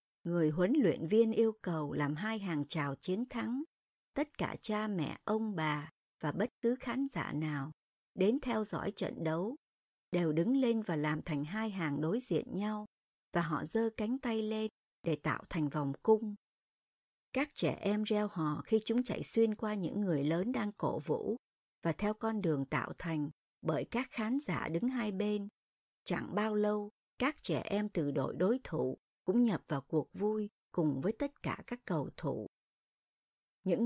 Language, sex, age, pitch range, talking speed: Vietnamese, male, 60-79, 160-225 Hz, 185 wpm